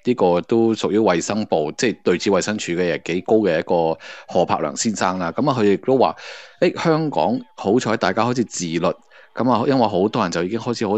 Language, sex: Chinese, male